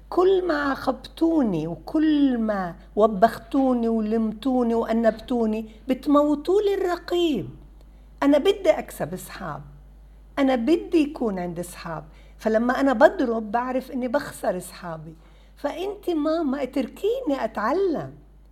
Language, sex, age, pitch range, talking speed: Arabic, female, 50-69, 220-310 Hz, 95 wpm